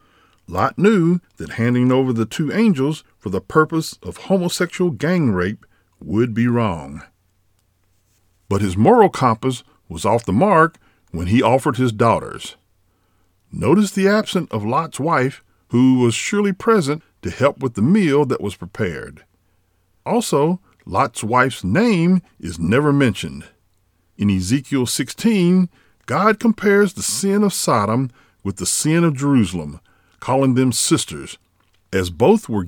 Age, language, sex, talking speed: 50-69, English, male, 140 wpm